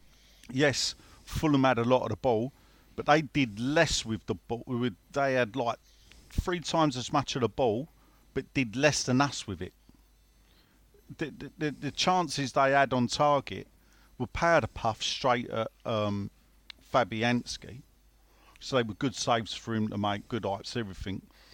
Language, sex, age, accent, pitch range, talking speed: English, male, 40-59, British, 110-140 Hz, 165 wpm